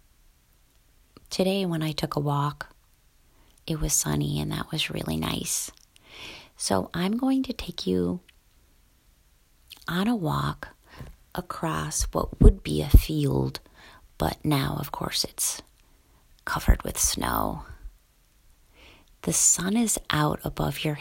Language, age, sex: English, 30-49, female